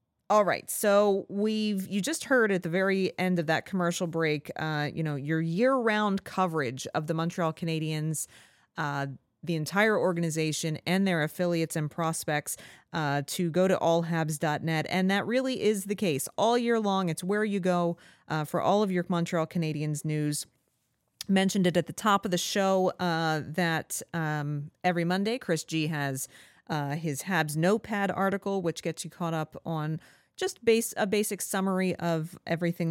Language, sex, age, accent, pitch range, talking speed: English, female, 30-49, American, 155-190 Hz, 175 wpm